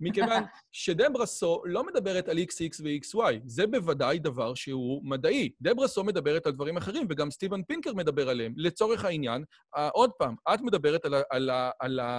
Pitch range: 145-200 Hz